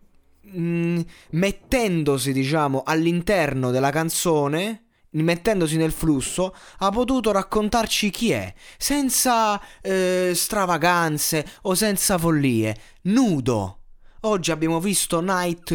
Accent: native